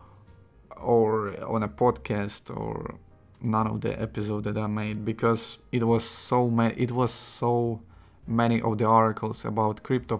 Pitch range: 110-120 Hz